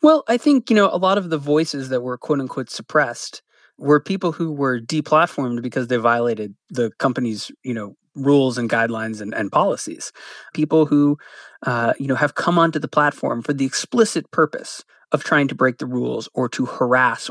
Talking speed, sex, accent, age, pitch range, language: 190 wpm, male, American, 30-49, 130-185 Hz, English